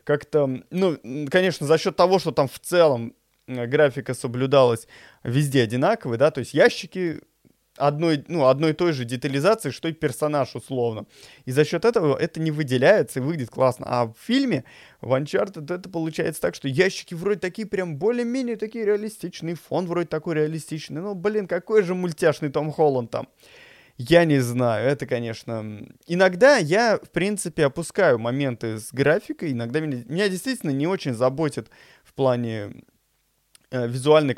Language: Russian